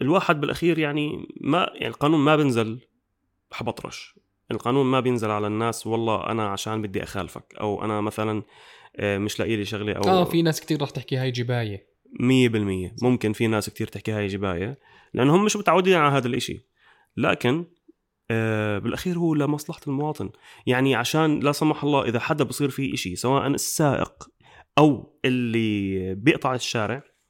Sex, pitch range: male, 110-145 Hz